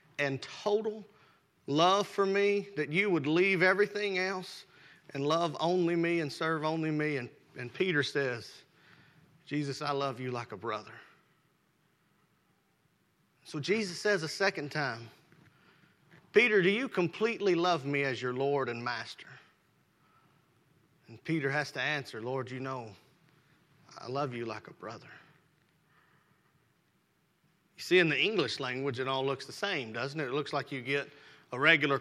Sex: male